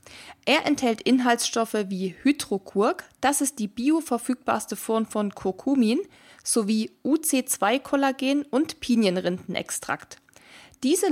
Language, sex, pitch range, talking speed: German, female, 200-265 Hz, 90 wpm